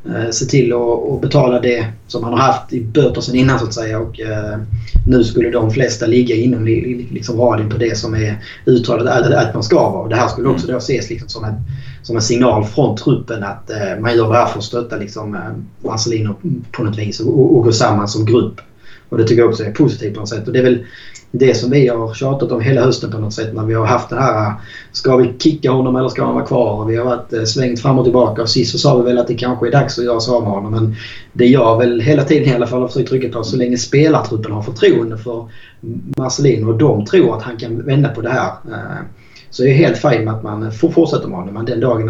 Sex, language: male, Swedish